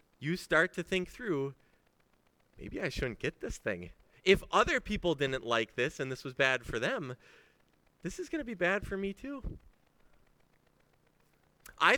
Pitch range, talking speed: 105-160 Hz, 160 wpm